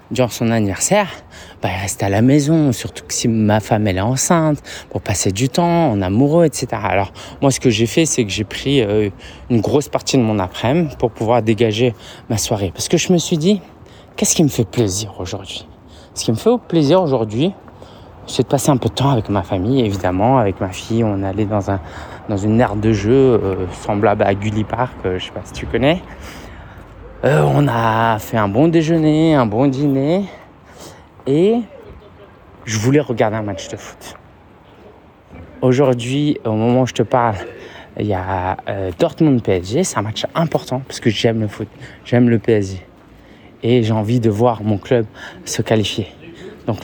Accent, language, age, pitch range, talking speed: French, French, 20-39, 105-135 Hz, 190 wpm